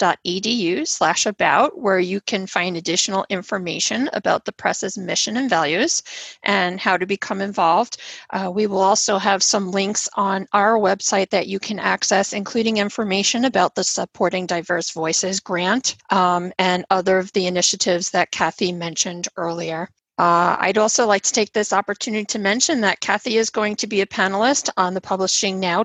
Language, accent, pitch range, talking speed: English, American, 185-220 Hz, 165 wpm